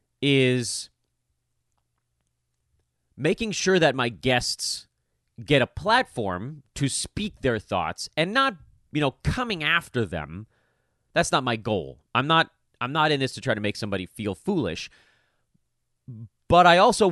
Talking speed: 140 wpm